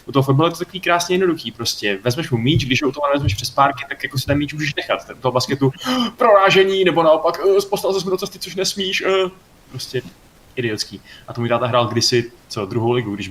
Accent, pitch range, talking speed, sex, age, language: native, 110-140 Hz, 230 wpm, male, 20-39, Czech